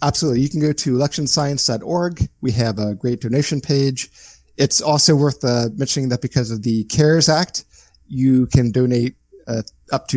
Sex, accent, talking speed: male, American, 170 wpm